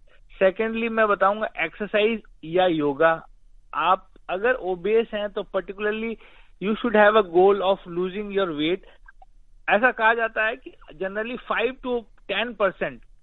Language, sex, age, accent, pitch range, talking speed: Hindi, male, 50-69, native, 180-220 Hz, 140 wpm